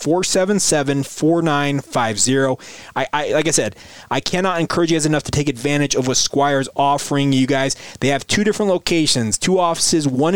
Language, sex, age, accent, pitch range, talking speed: English, male, 30-49, American, 135-165 Hz, 195 wpm